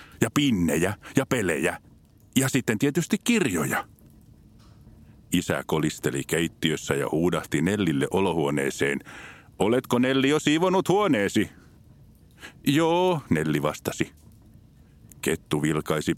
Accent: native